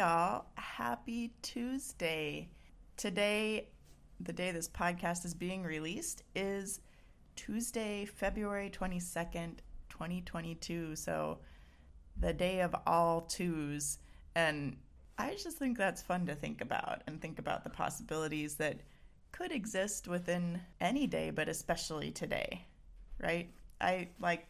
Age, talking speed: 30-49, 120 wpm